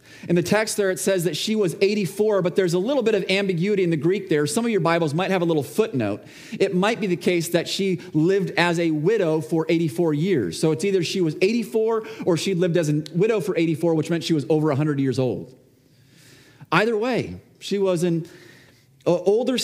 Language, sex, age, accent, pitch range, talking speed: English, male, 30-49, American, 135-190 Hz, 220 wpm